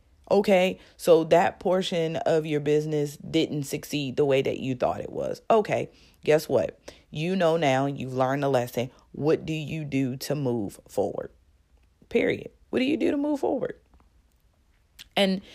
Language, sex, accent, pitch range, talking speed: English, female, American, 130-155 Hz, 160 wpm